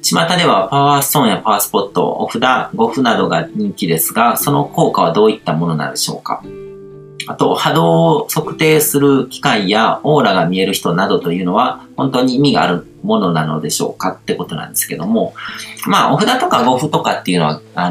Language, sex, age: Japanese, male, 40-59